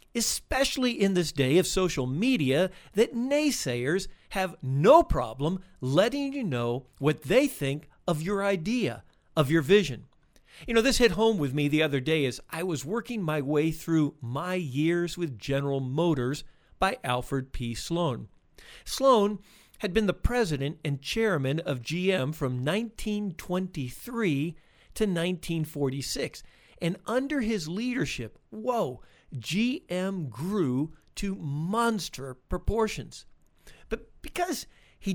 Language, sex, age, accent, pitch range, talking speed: English, male, 50-69, American, 145-205 Hz, 130 wpm